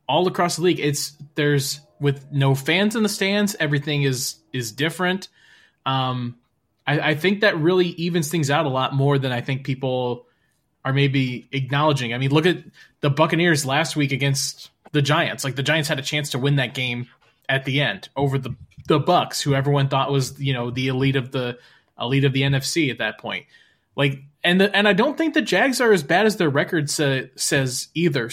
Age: 20-39